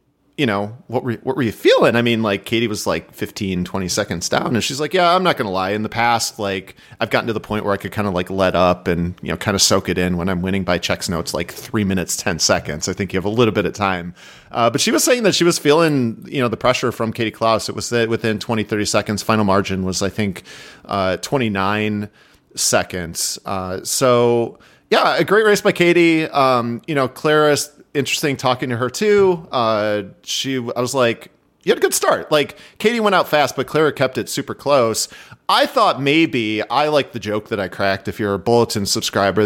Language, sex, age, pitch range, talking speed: English, male, 30-49, 105-135 Hz, 235 wpm